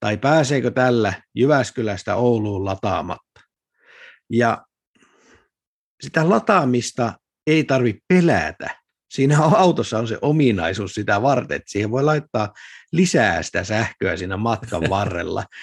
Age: 50-69